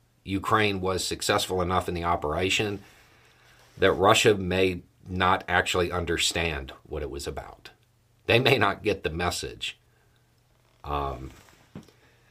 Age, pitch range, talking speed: 50-69, 85-110 Hz, 115 wpm